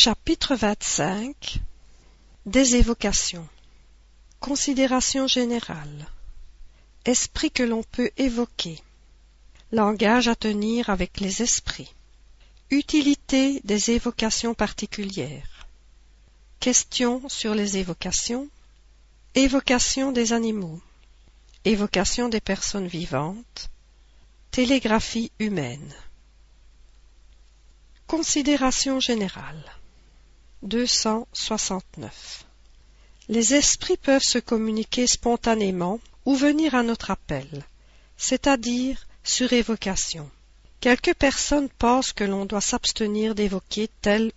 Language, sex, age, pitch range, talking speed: French, female, 50-69, 170-245 Hz, 80 wpm